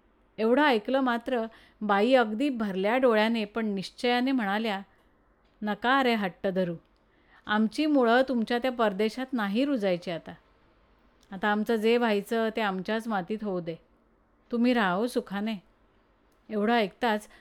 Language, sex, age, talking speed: Marathi, female, 30-49, 125 wpm